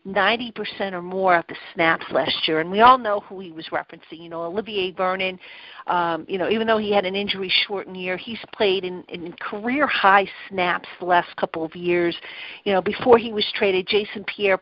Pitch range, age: 190-220 Hz, 50-69